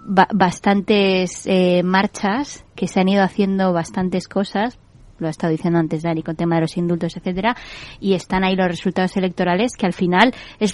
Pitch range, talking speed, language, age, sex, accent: 175-215 Hz, 185 wpm, Spanish, 20-39, female, Spanish